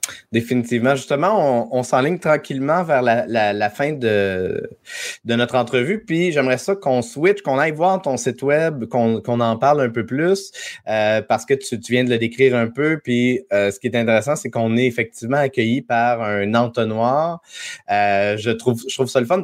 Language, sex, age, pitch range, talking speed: French, male, 30-49, 110-135 Hz, 205 wpm